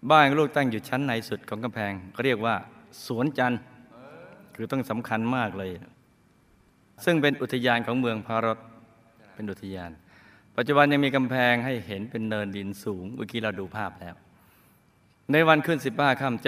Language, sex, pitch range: Thai, male, 105-130 Hz